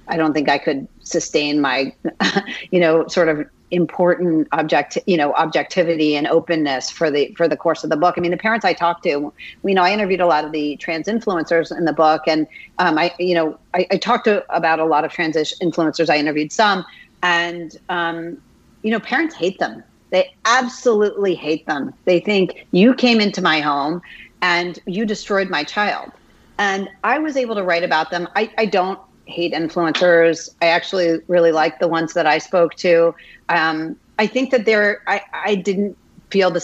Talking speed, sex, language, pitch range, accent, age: 195 wpm, female, English, 165-200 Hz, American, 40-59